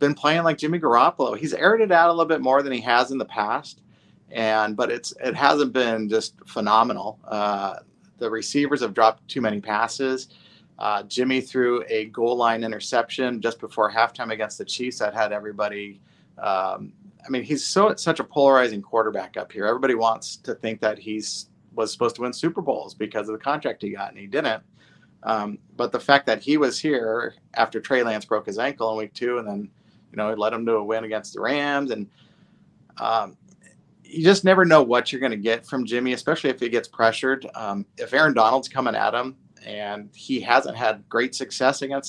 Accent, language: American, English